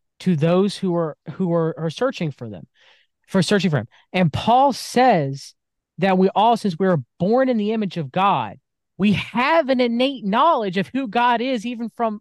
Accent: American